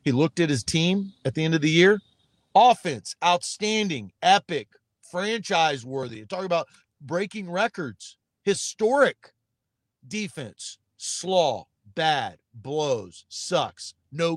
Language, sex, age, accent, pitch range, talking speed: English, male, 50-69, American, 155-225 Hz, 110 wpm